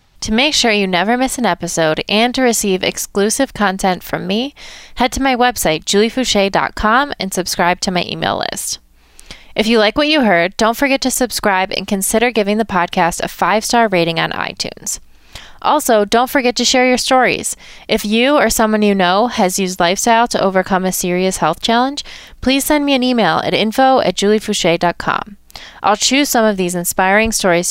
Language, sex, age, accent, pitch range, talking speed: English, female, 20-39, American, 180-240 Hz, 180 wpm